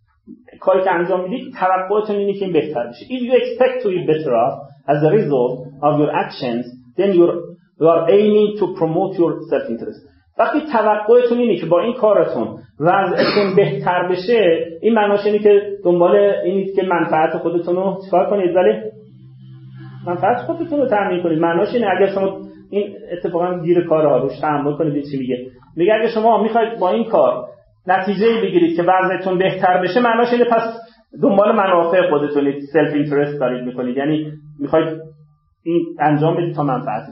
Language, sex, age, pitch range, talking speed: Persian, male, 40-59, 145-195 Hz, 160 wpm